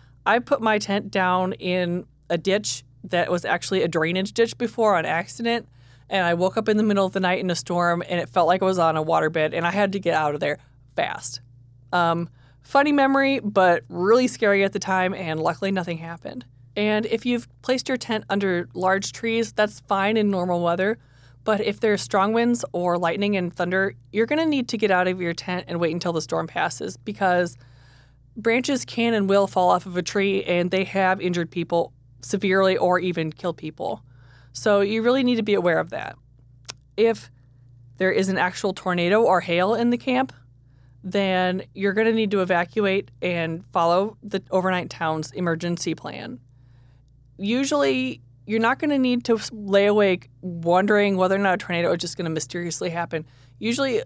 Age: 20-39